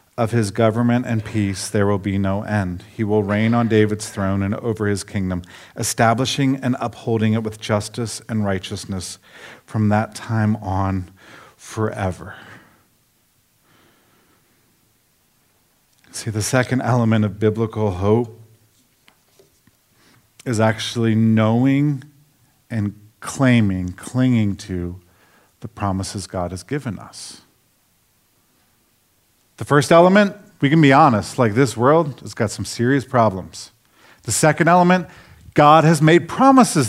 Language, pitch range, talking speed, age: English, 105-140 Hz, 120 wpm, 50-69